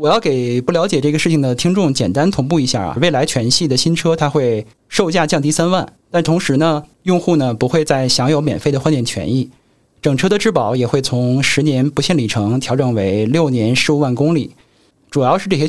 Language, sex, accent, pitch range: Chinese, male, native, 130-175 Hz